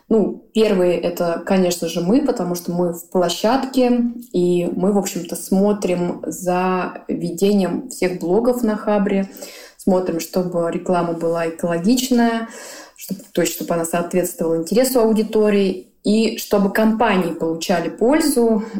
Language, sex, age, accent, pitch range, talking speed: Russian, female, 20-39, native, 175-220 Hz, 130 wpm